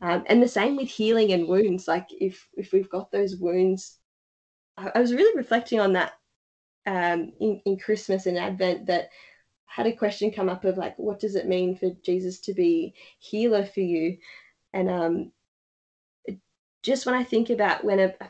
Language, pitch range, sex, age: English, 180-205 Hz, female, 10-29